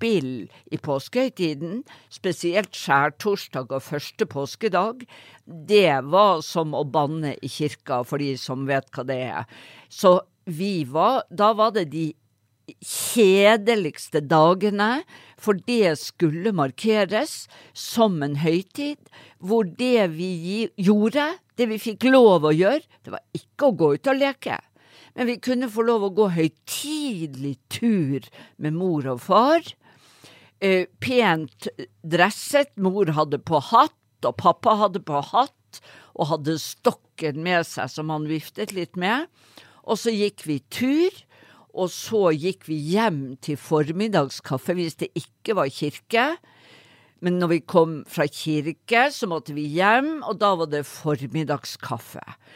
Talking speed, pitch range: 145 wpm, 150-225 Hz